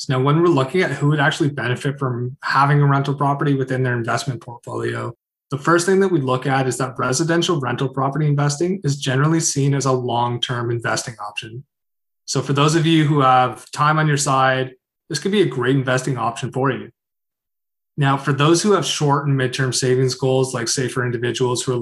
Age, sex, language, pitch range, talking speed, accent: 20-39, male, English, 125-145 Hz, 205 wpm, American